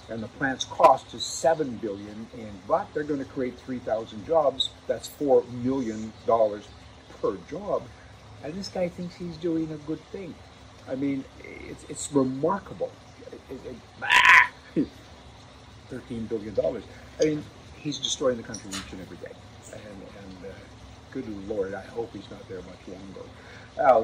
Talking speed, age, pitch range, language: 155 wpm, 50-69, 110-135 Hz, English